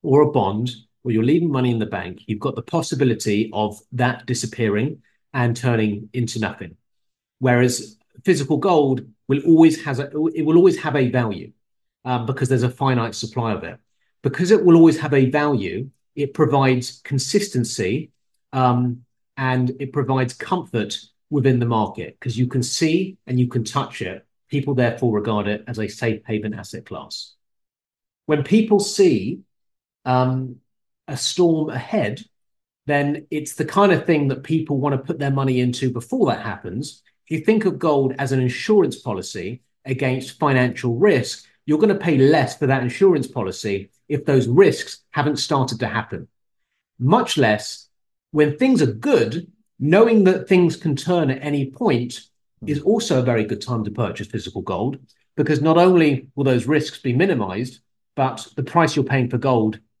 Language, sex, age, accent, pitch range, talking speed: English, male, 40-59, British, 115-150 Hz, 170 wpm